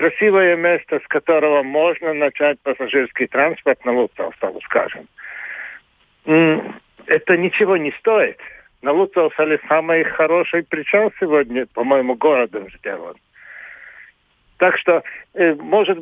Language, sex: Russian, male